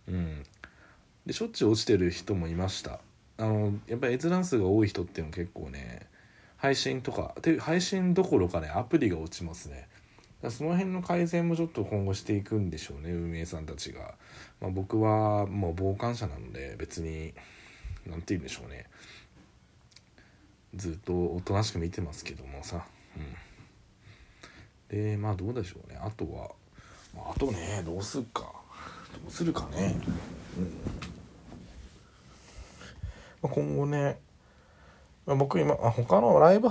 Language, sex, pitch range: Japanese, male, 85-130 Hz